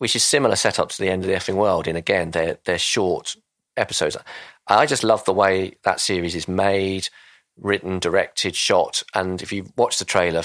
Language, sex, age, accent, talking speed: English, male, 40-59, British, 200 wpm